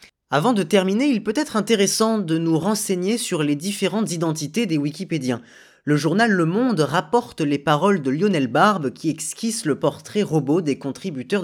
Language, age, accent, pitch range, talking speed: French, 20-39, French, 130-190 Hz, 175 wpm